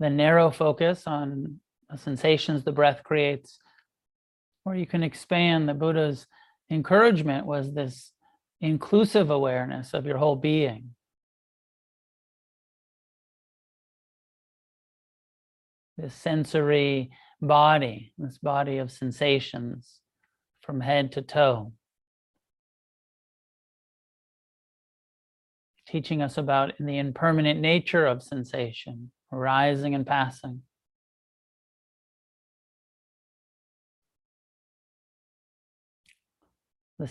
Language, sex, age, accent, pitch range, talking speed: English, male, 40-59, American, 135-155 Hz, 75 wpm